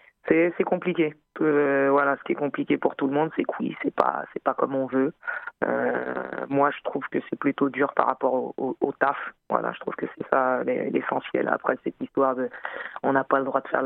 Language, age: French, 20-39